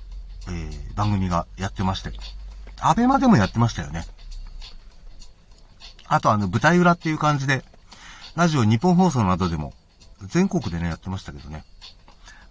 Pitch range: 90-140 Hz